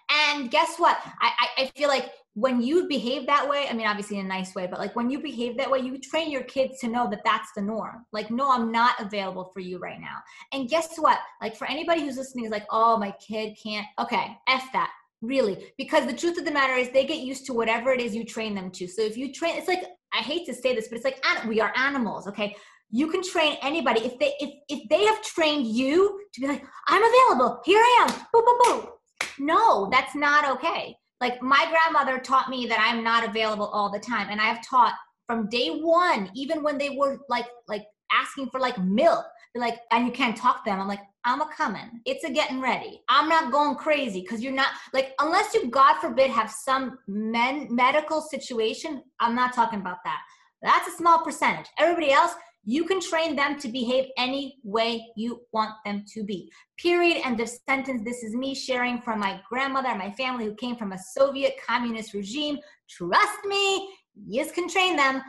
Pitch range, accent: 230-305 Hz, American